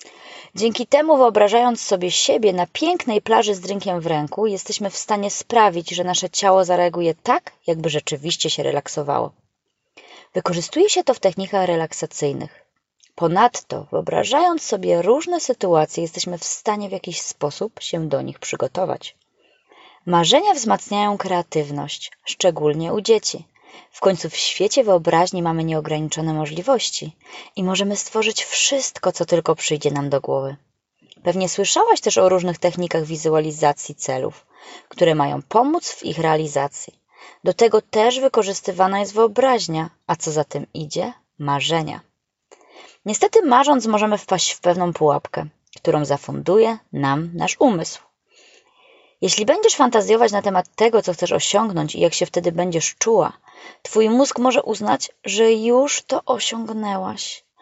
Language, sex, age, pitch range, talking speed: Polish, female, 20-39, 165-225 Hz, 135 wpm